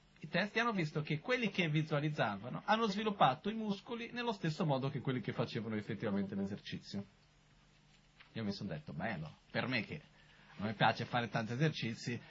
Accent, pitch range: native, 115-165 Hz